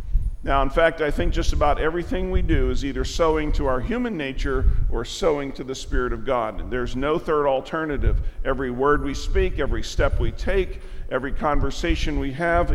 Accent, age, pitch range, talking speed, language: American, 50-69, 135-170 Hz, 190 wpm, English